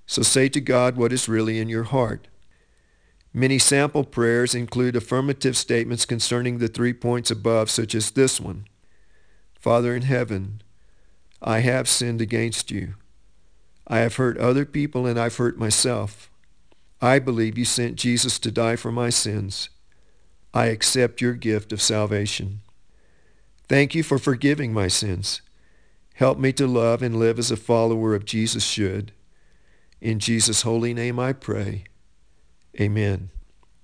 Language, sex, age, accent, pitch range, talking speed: English, male, 50-69, American, 110-130 Hz, 145 wpm